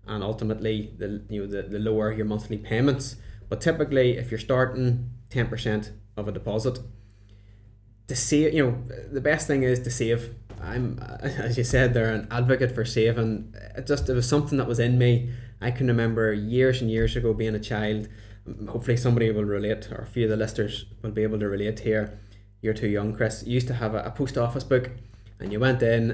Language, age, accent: English, 20-39, Irish